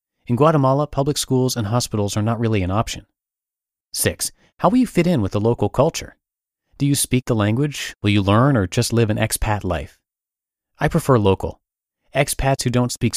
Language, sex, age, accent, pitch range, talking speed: English, male, 30-49, American, 100-125 Hz, 190 wpm